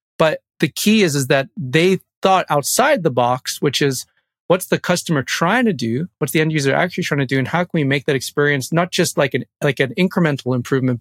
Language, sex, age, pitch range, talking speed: English, male, 30-49, 130-165 Hz, 230 wpm